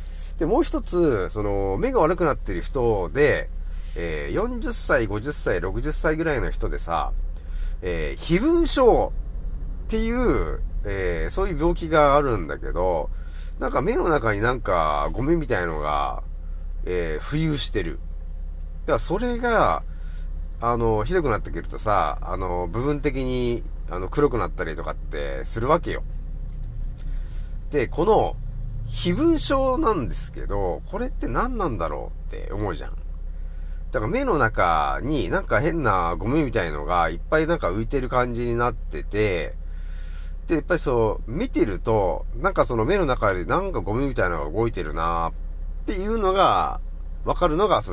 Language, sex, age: Japanese, male, 40-59